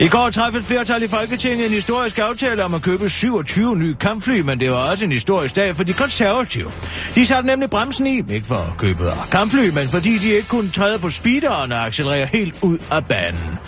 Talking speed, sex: 215 wpm, male